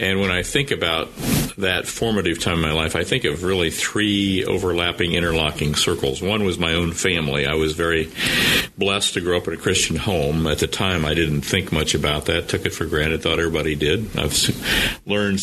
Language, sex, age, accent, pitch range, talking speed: English, male, 50-69, American, 80-90 Hz, 205 wpm